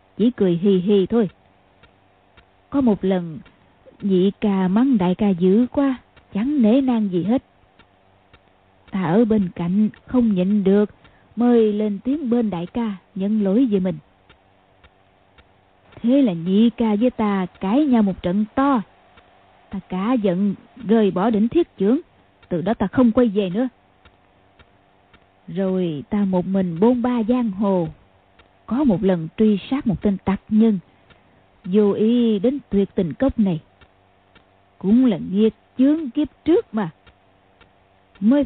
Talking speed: 150 wpm